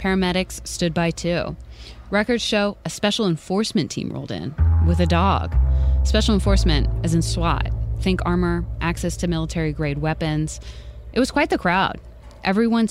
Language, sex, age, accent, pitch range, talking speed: English, female, 20-39, American, 135-205 Hz, 155 wpm